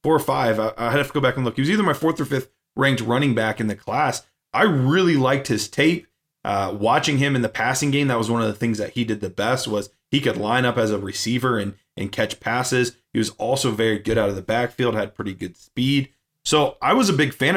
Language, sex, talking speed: English, male, 265 wpm